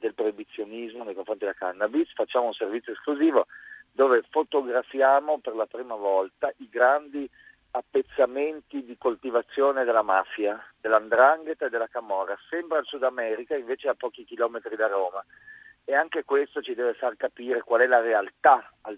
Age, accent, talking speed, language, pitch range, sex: 40-59, native, 155 wpm, Italian, 115-155 Hz, male